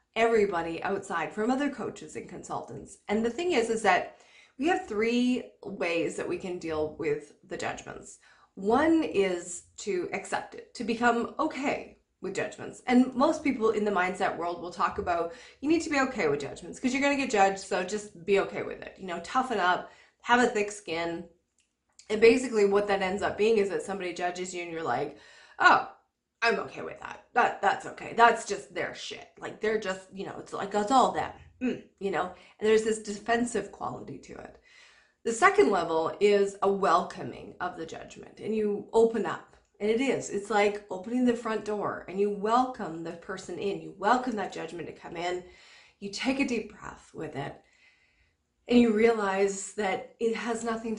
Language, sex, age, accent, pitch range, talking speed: English, female, 20-39, American, 190-240 Hz, 195 wpm